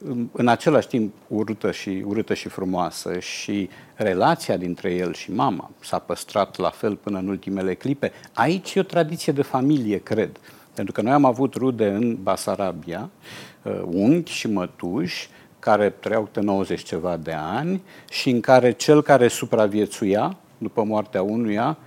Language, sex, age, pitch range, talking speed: English, male, 50-69, 105-145 Hz, 155 wpm